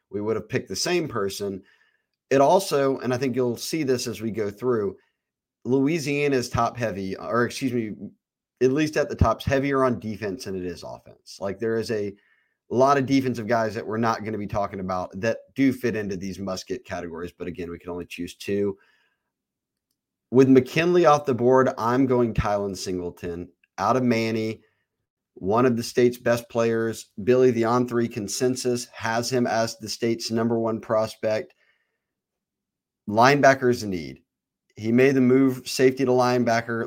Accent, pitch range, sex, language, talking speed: American, 110-130 Hz, male, English, 175 wpm